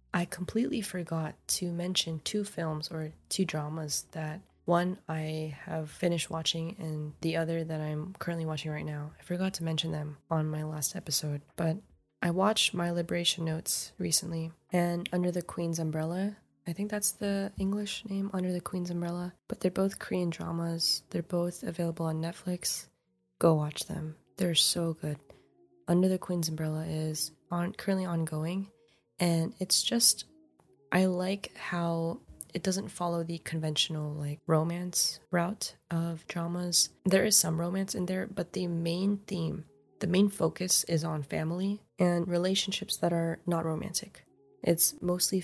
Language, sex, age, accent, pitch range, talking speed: English, female, 20-39, American, 155-180 Hz, 155 wpm